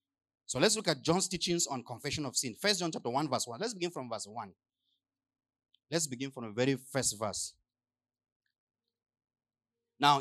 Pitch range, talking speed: 115-170 Hz, 170 wpm